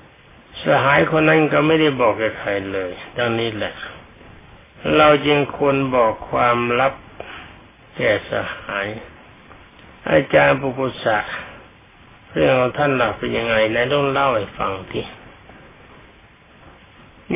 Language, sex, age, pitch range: Thai, male, 60-79, 105-140 Hz